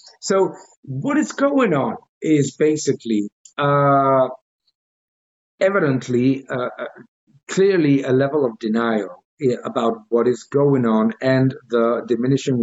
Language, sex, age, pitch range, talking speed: English, male, 50-69, 125-165 Hz, 110 wpm